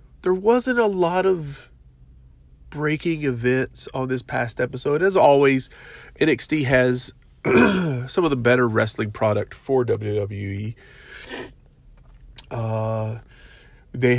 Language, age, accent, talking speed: English, 30-49, American, 105 wpm